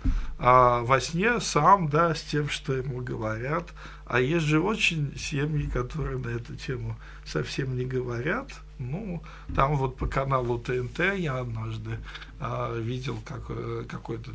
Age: 50-69